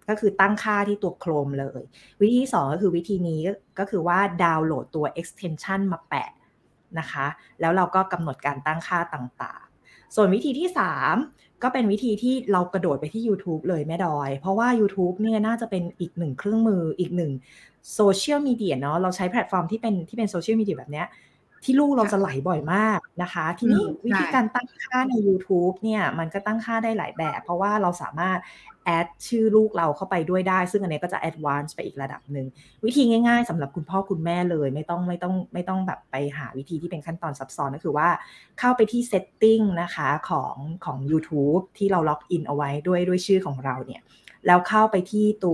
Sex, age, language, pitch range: female, 20-39, Thai, 155-210 Hz